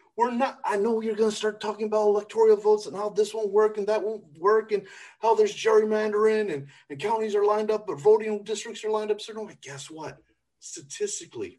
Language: English